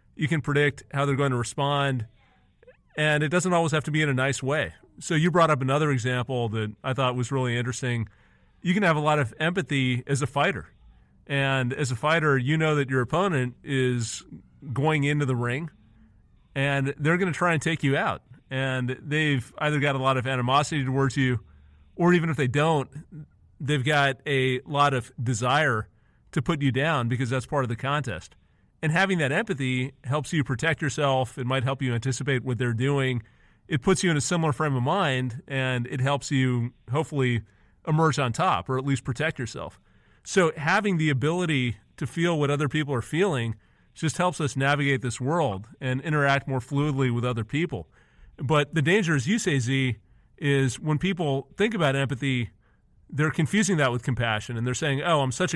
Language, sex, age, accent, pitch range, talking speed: English, male, 40-59, American, 125-155 Hz, 195 wpm